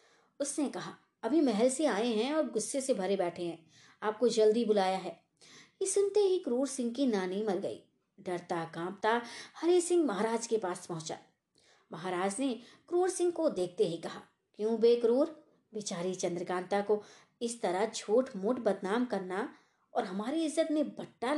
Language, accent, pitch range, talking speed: Hindi, native, 200-295 Hz, 165 wpm